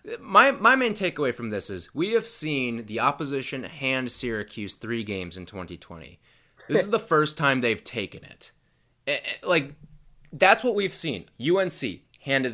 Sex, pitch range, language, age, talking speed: male, 110-165 Hz, English, 20-39, 165 wpm